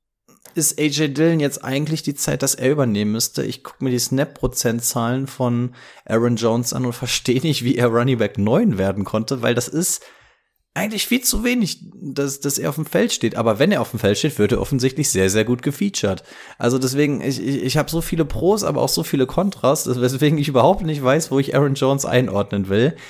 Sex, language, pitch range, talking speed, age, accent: male, German, 110-140 Hz, 215 wpm, 30-49, German